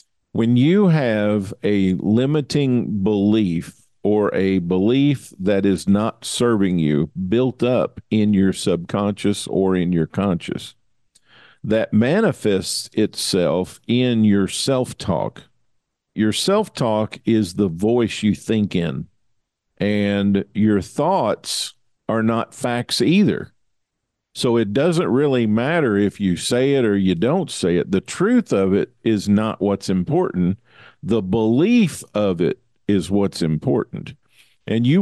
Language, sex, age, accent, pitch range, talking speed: English, male, 50-69, American, 100-125 Hz, 130 wpm